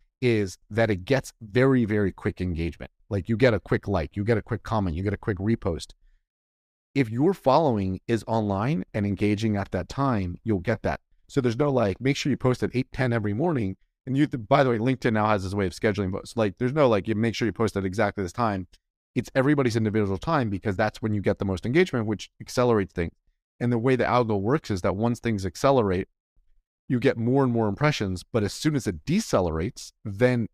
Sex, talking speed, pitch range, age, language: male, 225 wpm, 100-125 Hz, 30-49, English